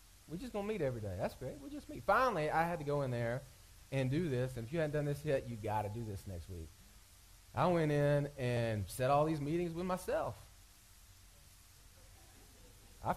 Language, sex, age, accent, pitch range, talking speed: English, male, 30-49, American, 100-145 Hz, 215 wpm